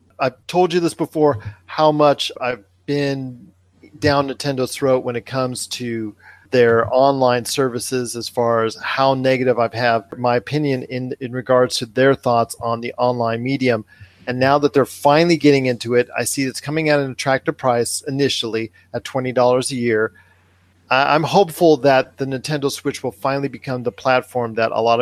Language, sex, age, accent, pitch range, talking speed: English, male, 40-59, American, 115-140 Hz, 175 wpm